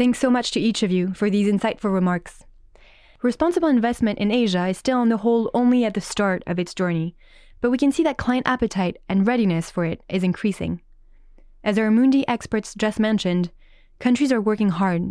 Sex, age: female, 20-39